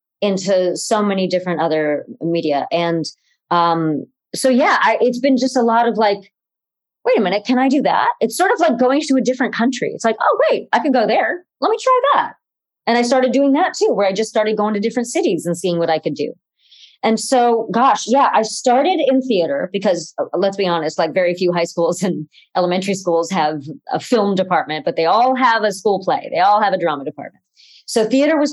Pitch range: 175-230 Hz